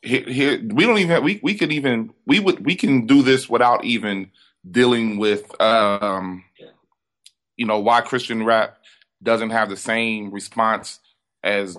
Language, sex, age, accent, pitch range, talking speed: English, male, 20-39, American, 105-130 Hz, 165 wpm